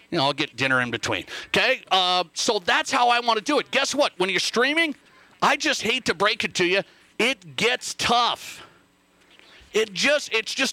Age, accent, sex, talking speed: 40-59, American, male, 195 wpm